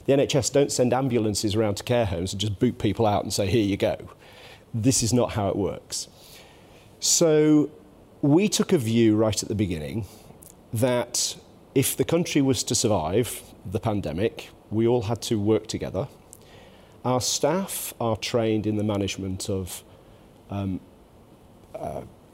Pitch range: 100-125 Hz